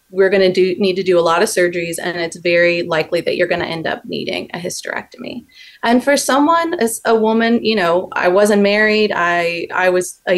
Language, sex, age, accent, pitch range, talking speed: English, female, 30-49, American, 170-205 Hz, 225 wpm